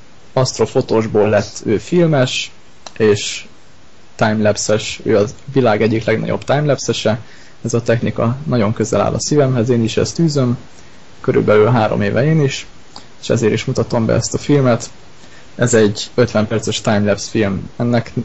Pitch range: 110-125 Hz